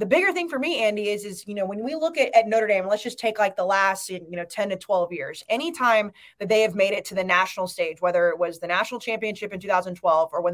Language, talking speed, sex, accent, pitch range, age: English, 280 wpm, female, American, 190-240 Hz, 20-39